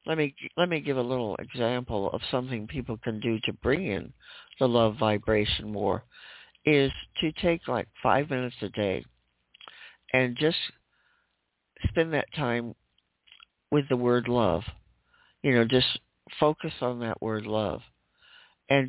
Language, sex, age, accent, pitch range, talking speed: English, male, 60-79, American, 105-130 Hz, 145 wpm